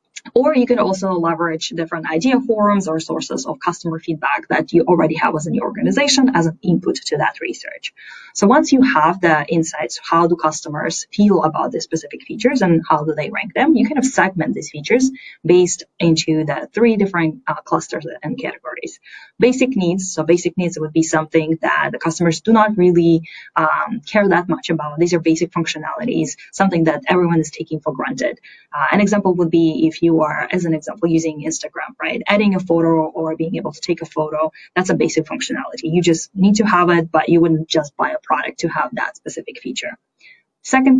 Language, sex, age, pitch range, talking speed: English, female, 20-39, 160-195 Hz, 200 wpm